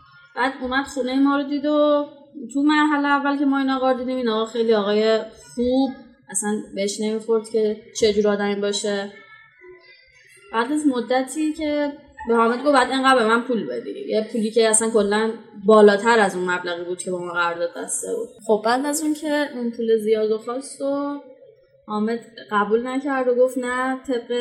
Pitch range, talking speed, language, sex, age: 210-285 Hz, 185 wpm, English, female, 10-29